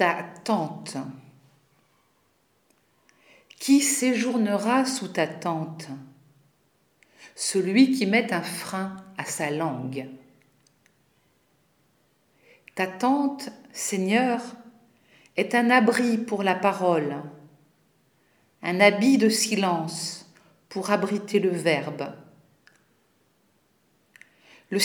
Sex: female